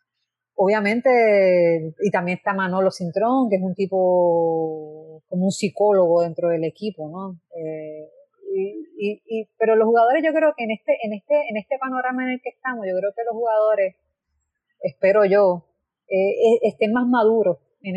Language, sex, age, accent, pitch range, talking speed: Spanish, female, 30-49, American, 185-245 Hz, 170 wpm